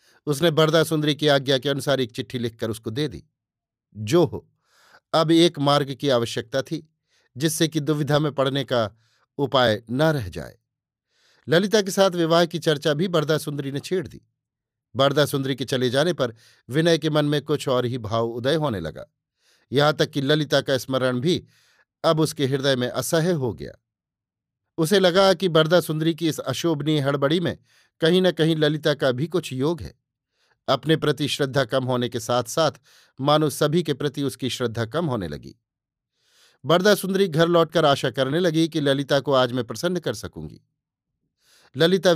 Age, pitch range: 50-69, 130-160 Hz